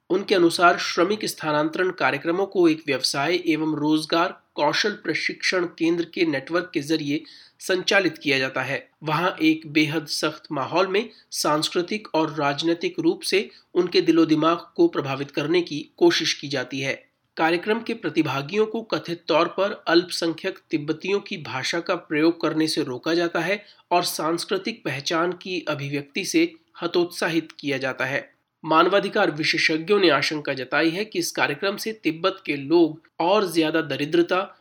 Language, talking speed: Hindi, 150 wpm